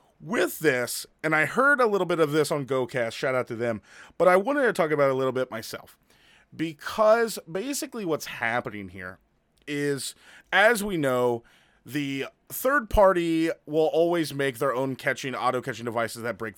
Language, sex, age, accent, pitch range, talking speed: English, male, 30-49, American, 130-175 Hz, 175 wpm